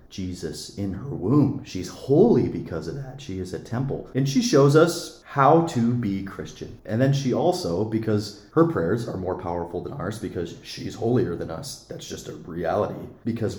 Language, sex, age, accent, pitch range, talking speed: English, male, 30-49, American, 90-120 Hz, 190 wpm